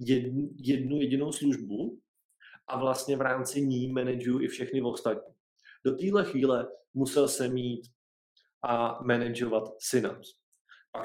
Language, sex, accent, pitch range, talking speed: Czech, male, native, 110-130 Hz, 120 wpm